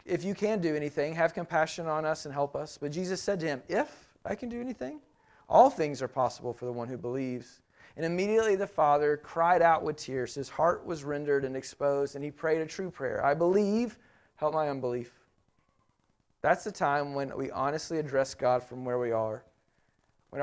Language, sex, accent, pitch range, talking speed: English, male, American, 135-170 Hz, 205 wpm